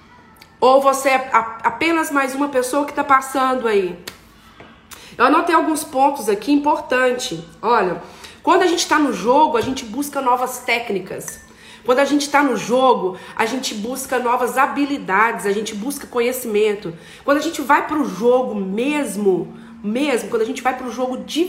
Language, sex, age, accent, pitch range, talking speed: Portuguese, female, 40-59, Brazilian, 230-300 Hz, 165 wpm